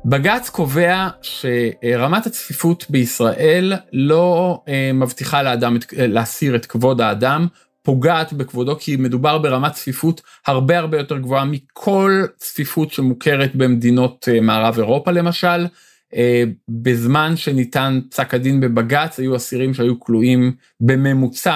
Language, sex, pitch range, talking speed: Hebrew, male, 120-165 Hz, 110 wpm